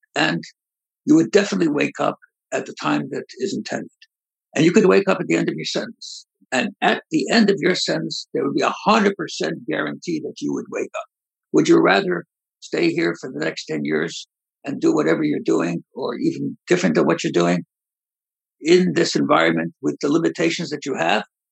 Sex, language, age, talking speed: male, English, 60-79, 200 wpm